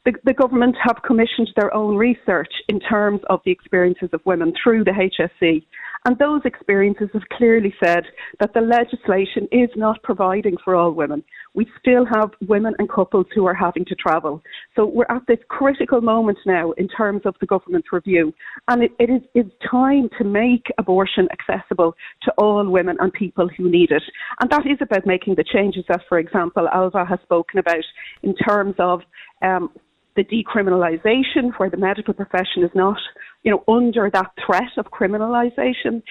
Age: 40-59